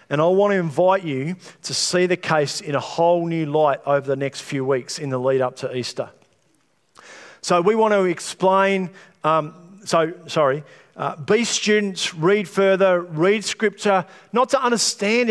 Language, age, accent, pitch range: English, 50-69, Australian, 155-195 Hz